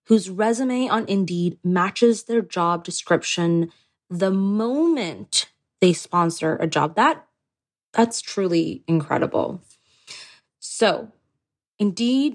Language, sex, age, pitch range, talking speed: English, female, 20-39, 170-210 Hz, 90 wpm